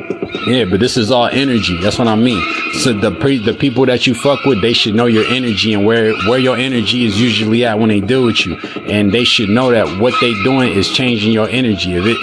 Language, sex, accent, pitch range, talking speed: English, male, American, 110-130 Hz, 250 wpm